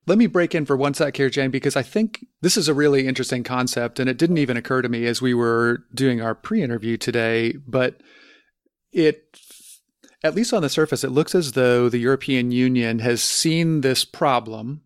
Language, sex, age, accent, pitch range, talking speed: English, male, 40-59, American, 120-145 Hz, 200 wpm